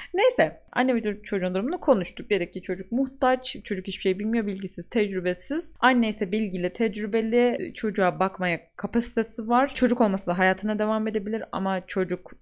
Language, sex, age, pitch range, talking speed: Turkish, female, 30-49, 195-235 Hz, 155 wpm